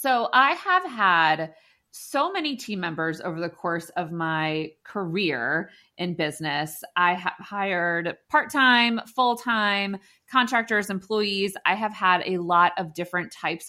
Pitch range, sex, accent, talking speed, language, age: 165-200 Hz, female, American, 135 wpm, English, 30-49